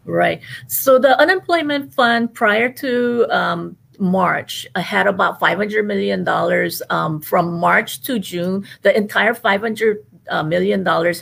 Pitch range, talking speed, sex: 165-220 Hz, 140 wpm, female